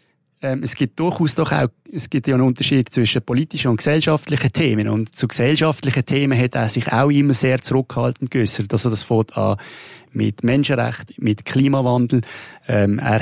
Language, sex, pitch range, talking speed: German, male, 115-140 Hz, 160 wpm